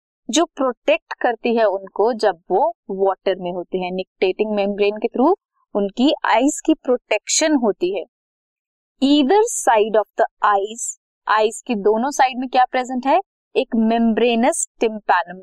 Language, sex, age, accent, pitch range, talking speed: Hindi, female, 20-39, native, 205-305 Hz, 145 wpm